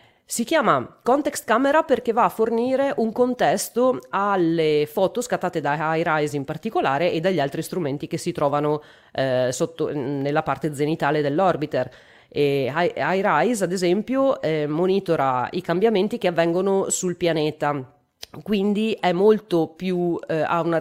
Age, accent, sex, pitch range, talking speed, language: 30-49, native, female, 150-190 Hz, 145 wpm, Italian